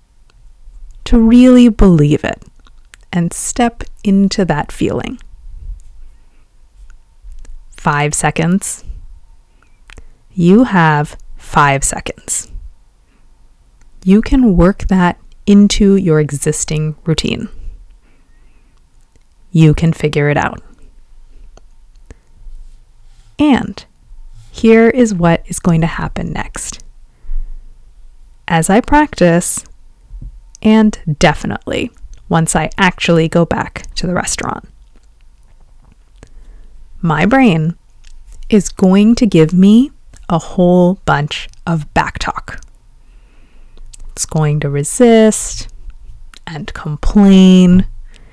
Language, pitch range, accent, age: English, 155-205 Hz, American, 30-49